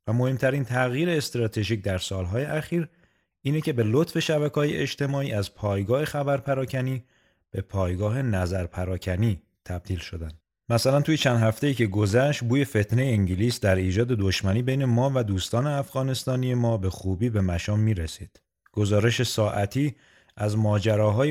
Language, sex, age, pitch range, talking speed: Persian, male, 30-49, 95-130 Hz, 130 wpm